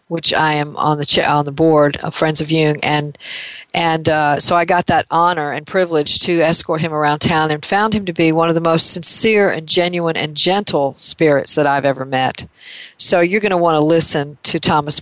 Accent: American